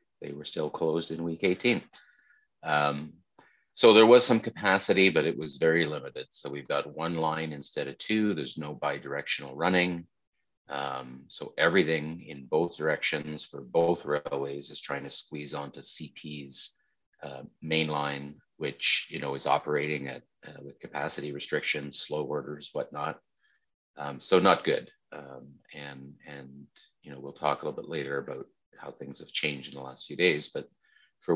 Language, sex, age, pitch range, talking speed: English, male, 30-49, 70-85 Hz, 170 wpm